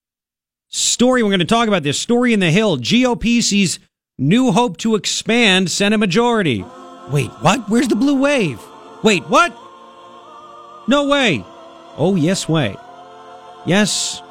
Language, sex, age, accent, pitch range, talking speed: English, male, 40-59, American, 135-210 Hz, 140 wpm